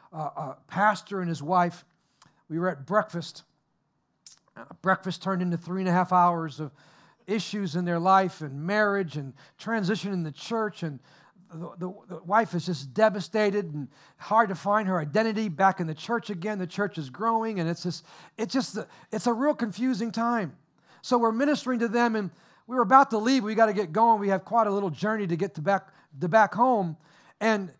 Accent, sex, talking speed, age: American, male, 205 wpm, 50-69